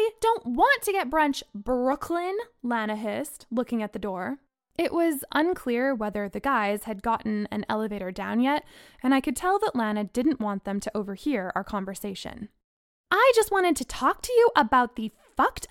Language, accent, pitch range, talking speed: English, American, 240-350 Hz, 180 wpm